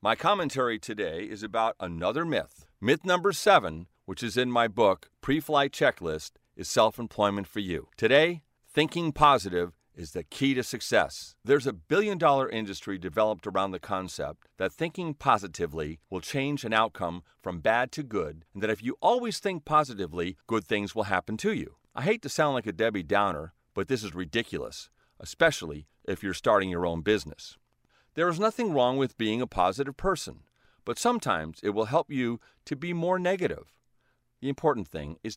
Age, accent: 40-59, American